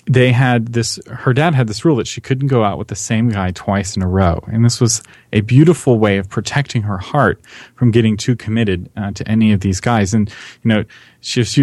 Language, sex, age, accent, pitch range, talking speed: English, male, 30-49, American, 100-125 Hz, 240 wpm